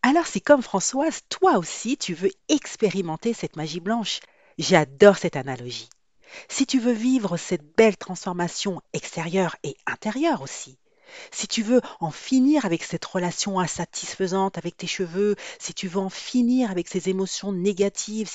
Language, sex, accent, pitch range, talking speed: French, female, French, 165-220 Hz, 155 wpm